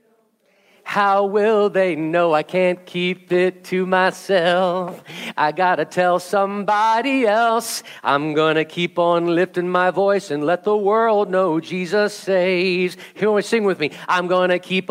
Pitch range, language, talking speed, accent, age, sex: 180-220 Hz, English, 145 wpm, American, 40-59, male